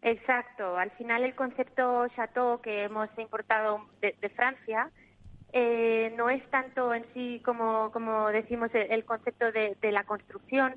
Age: 20-39